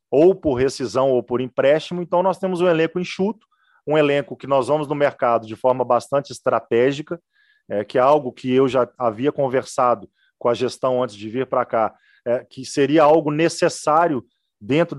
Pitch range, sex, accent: 125-160 Hz, male, Brazilian